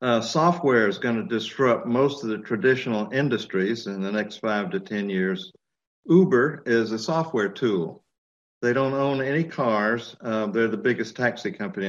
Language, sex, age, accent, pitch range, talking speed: English, male, 60-79, American, 105-130 Hz, 170 wpm